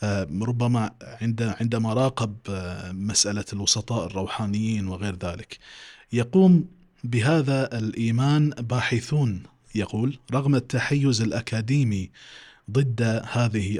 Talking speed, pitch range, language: 80 wpm, 105-130 Hz, Arabic